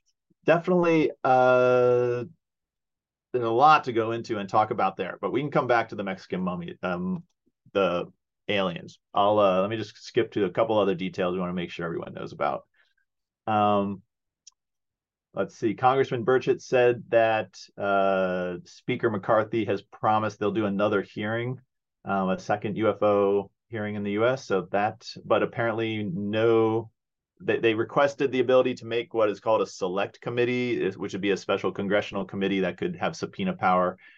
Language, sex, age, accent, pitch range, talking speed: English, male, 30-49, American, 100-120 Hz, 170 wpm